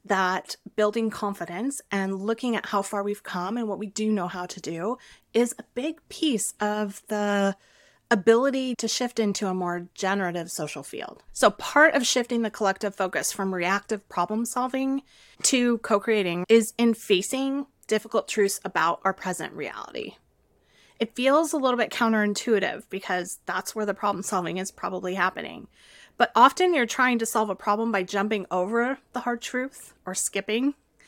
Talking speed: 165 wpm